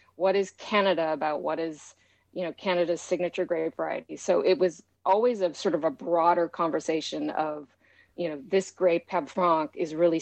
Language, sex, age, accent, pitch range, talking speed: English, female, 30-49, American, 165-200 Hz, 180 wpm